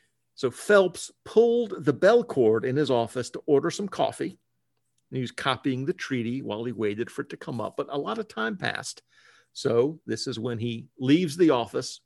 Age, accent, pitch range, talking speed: 50-69, American, 125-160 Hz, 205 wpm